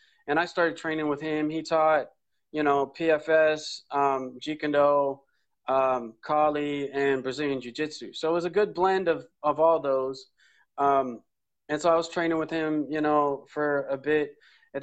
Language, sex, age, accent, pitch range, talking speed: English, male, 20-39, American, 140-160 Hz, 180 wpm